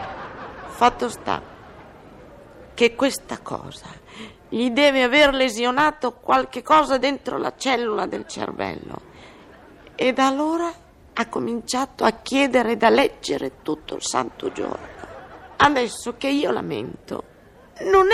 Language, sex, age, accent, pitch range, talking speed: Italian, female, 50-69, native, 250-290 Hz, 115 wpm